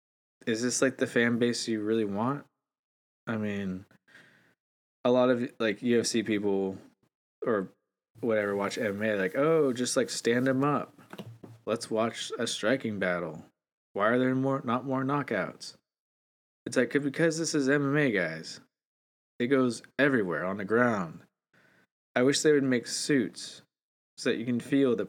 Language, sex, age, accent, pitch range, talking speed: English, male, 20-39, American, 95-125 Hz, 155 wpm